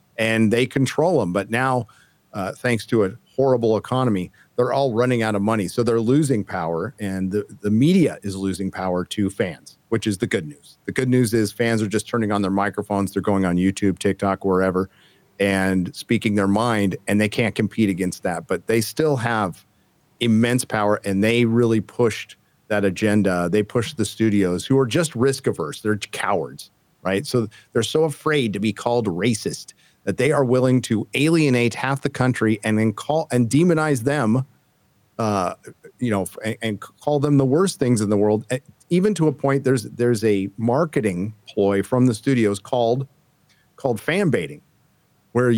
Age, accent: 50-69, American